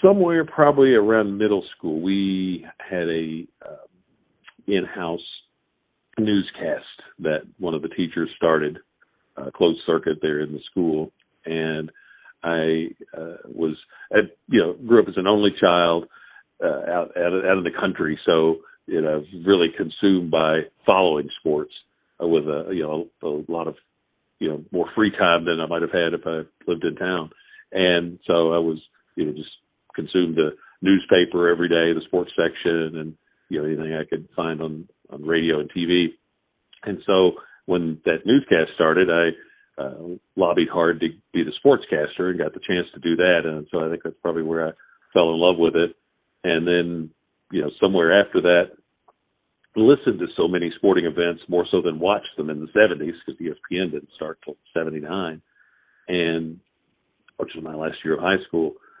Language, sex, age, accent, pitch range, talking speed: English, male, 50-69, American, 80-90 Hz, 175 wpm